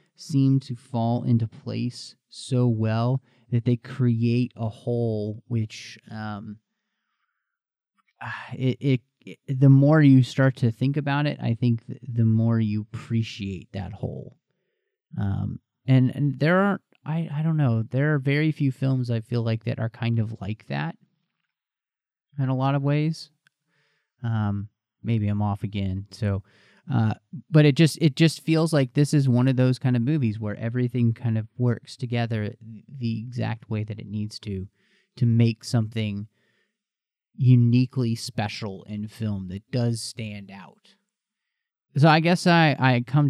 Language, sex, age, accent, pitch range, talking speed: English, male, 30-49, American, 115-140 Hz, 155 wpm